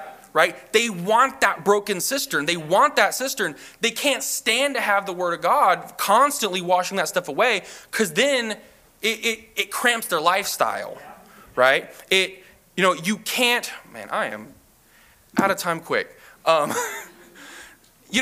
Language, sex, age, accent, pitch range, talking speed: English, male, 20-39, American, 170-235 Hz, 155 wpm